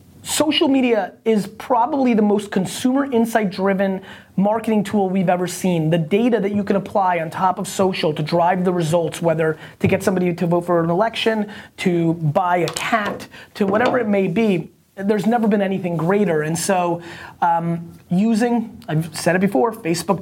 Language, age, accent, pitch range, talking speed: English, 30-49, American, 170-230 Hz, 180 wpm